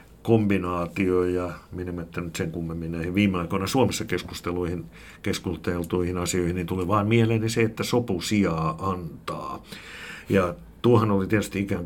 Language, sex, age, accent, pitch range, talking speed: Finnish, male, 60-79, native, 85-95 Hz, 135 wpm